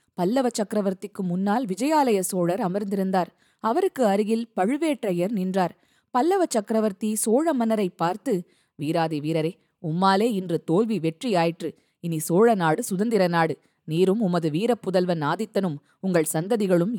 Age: 20-39